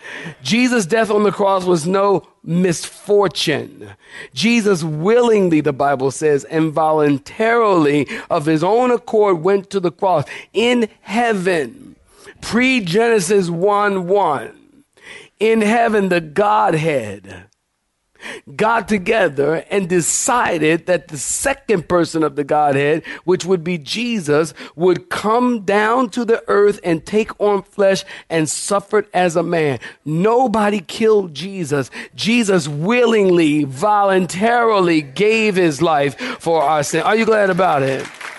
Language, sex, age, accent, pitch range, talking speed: English, male, 40-59, American, 145-205 Hz, 120 wpm